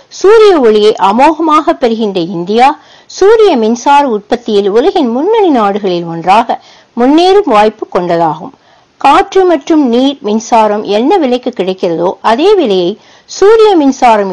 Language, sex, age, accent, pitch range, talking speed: English, female, 60-79, Indian, 210-320 Hz, 105 wpm